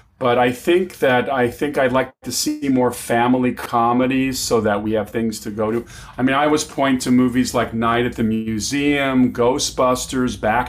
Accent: American